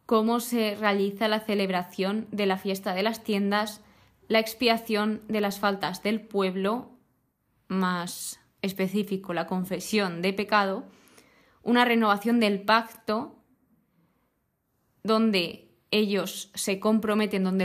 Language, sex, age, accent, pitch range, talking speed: Spanish, female, 20-39, Spanish, 190-215 Hz, 110 wpm